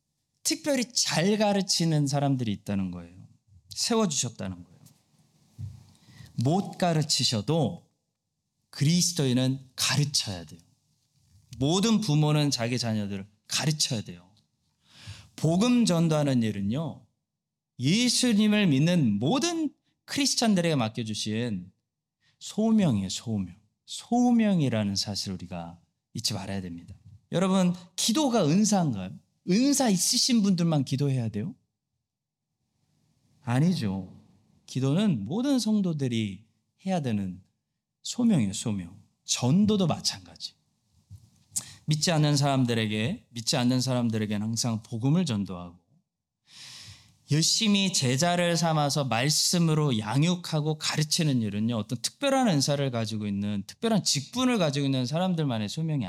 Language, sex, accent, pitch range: Korean, male, native, 110-175 Hz